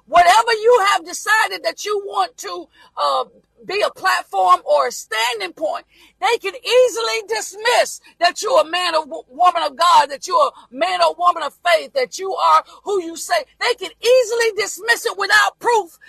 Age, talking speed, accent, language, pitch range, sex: 40-59, 185 wpm, American, English, 335-450 Hz, female